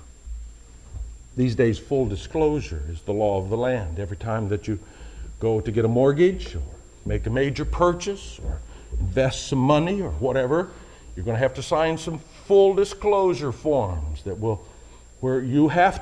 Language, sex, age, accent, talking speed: English, male, 60-79, American, 170 wpm